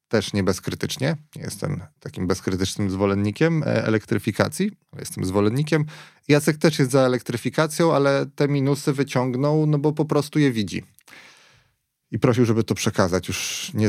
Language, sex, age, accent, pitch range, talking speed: Polish, male, 30-49, native, 95-135 Hz, 145 wpm